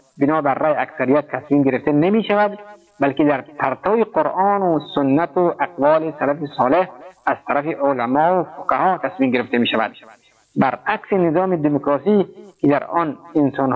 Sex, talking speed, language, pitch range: male, 140 wpm, Persian, 135-155 Hz